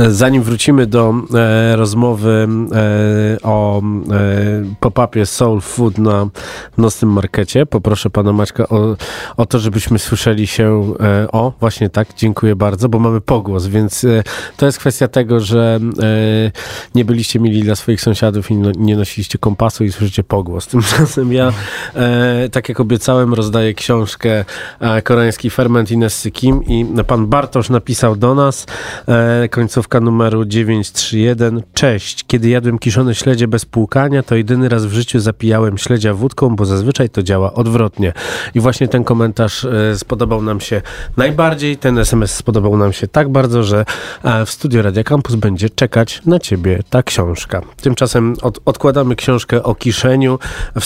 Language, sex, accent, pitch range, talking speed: Polish, male, native, 110-125 Hz, 155 wpm